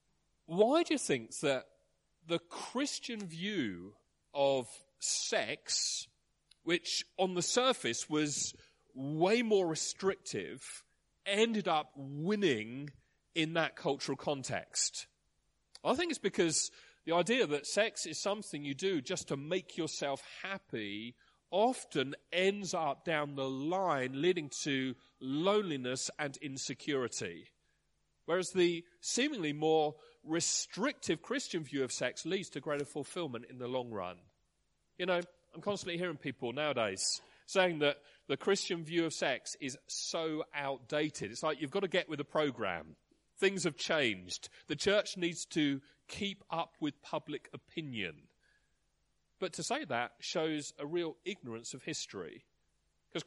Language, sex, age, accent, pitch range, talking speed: English, male, 40-59, British, 140-185 Hz, 135 wpm